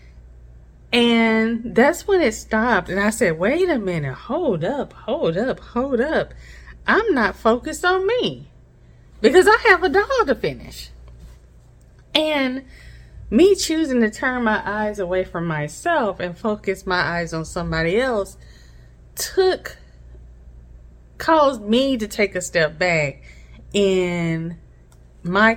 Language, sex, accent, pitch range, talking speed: English, female, American, 160-270 Hz, 130 wpm